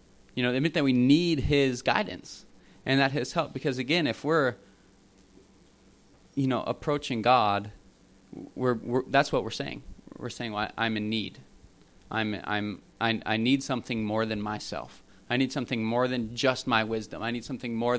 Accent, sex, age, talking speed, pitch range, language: American, male, 20-39, 175 wpm, 105-125 Hz, English